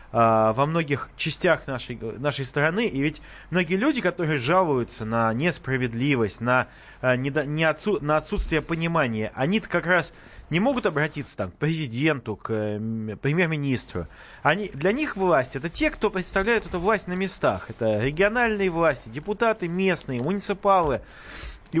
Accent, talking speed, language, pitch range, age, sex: native, 130 wpm, Russian, 130-200 Hz, 20-39, male